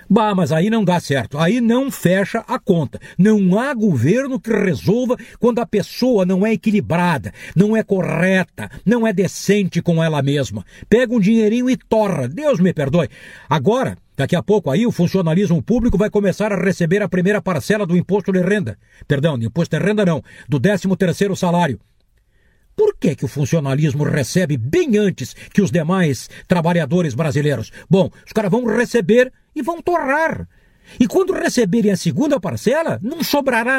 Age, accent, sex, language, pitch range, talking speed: 60-79, Brazilian, male, Portuguese, 170-235 Hz, 170 wpm